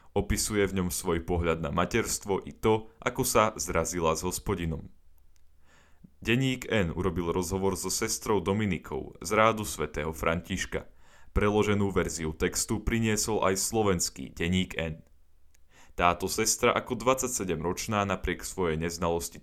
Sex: male